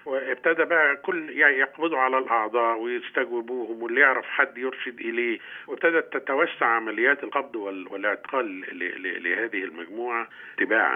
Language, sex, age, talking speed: Arabic, male, 50-69, 115 wpm